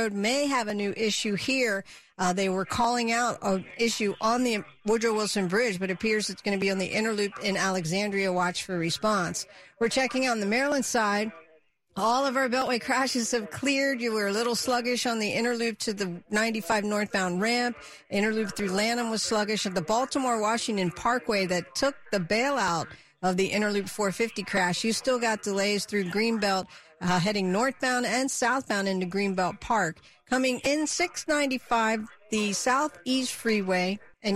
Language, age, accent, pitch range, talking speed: English, 50-69, American, 195-240 Hz, 170 wpm